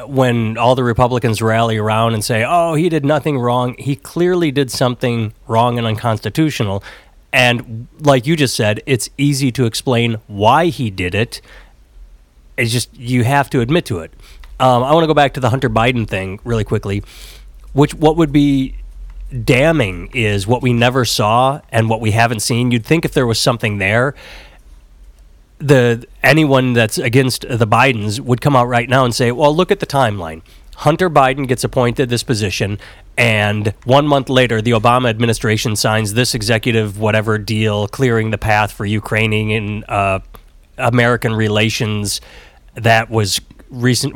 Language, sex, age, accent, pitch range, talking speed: English, male, 30-49, American, 105-130 Hz, 170 wpm